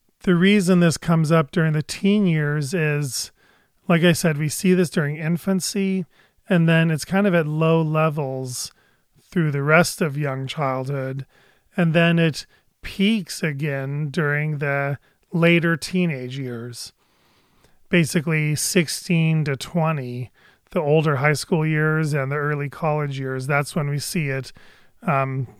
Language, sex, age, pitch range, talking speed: English, male, 30-49, 145-170 Hz, 145 wpm